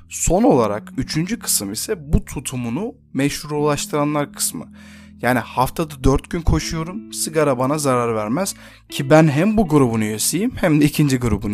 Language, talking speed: Turkish, 145 wpm